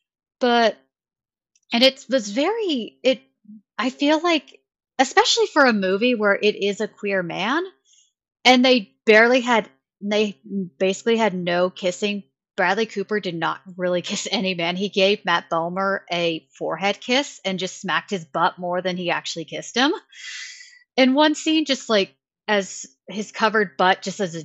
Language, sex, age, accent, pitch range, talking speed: English, female, 30-49, American, 180-235 Hz, 160 wpm